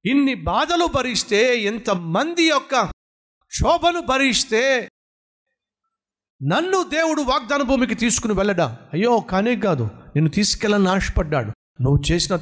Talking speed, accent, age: 100 wpm, native, 50-69